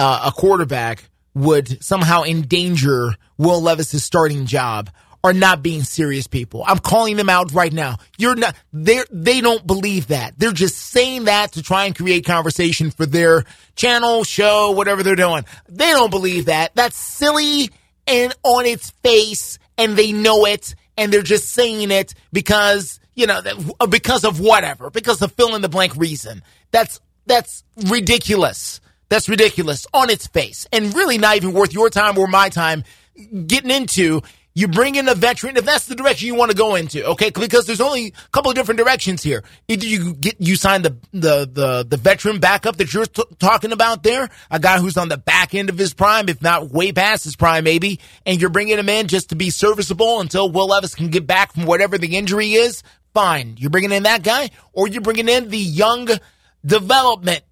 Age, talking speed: 30-49, 195 wpm